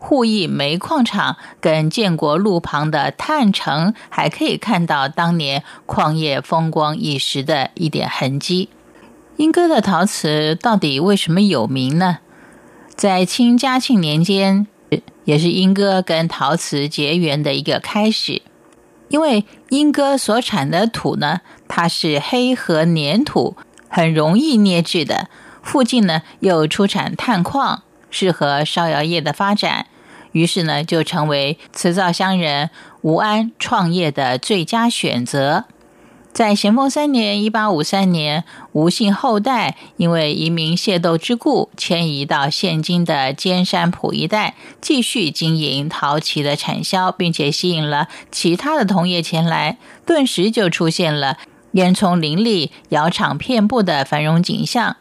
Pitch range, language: 155-210 Hz, Chinese